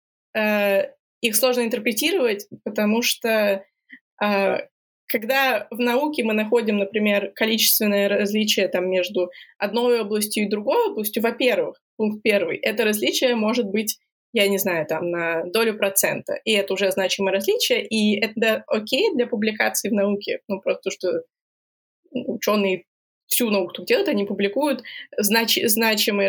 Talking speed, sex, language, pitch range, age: 125 wpm, female, Russian, 200-245 Hz, 20-39